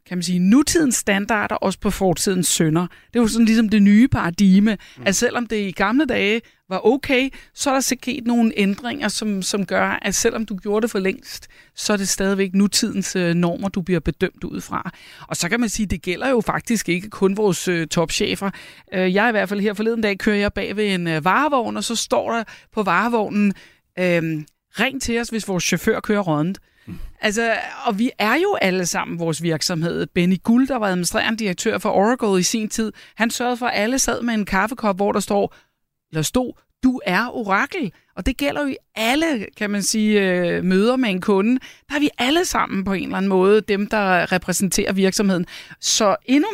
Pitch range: 185-235 Hz